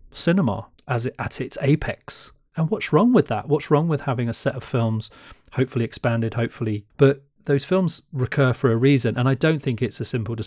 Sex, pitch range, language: male, 115-135 Hz, English